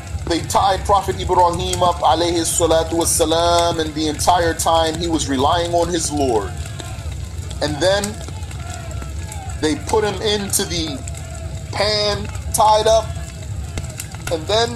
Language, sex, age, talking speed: Arabic, male, 30-49, 110 wpm